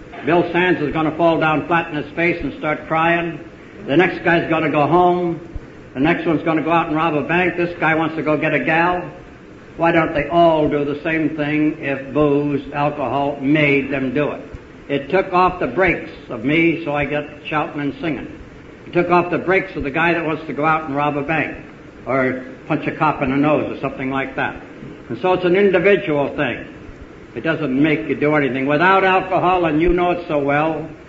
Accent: American